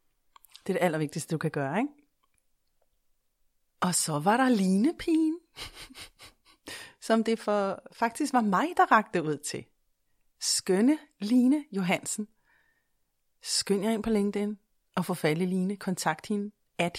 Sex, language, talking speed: female, Danish, 140 wpm